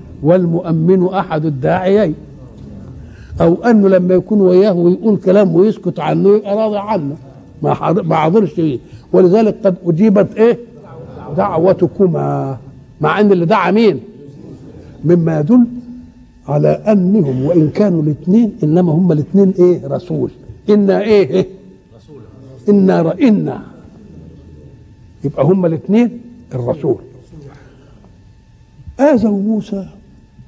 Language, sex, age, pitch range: Arabic, male, 60-79, 145-190 Hz